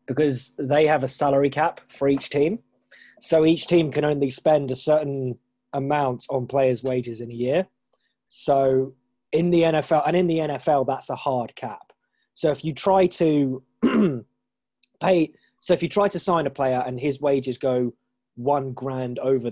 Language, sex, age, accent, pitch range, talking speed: English, male, 20-39, British, 125-145 Hz, 175 wpm